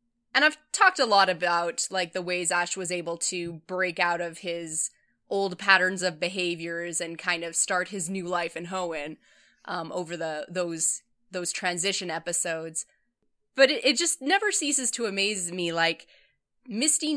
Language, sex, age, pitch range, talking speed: English, female, 20-39, 175-220 Hz, 170 wpm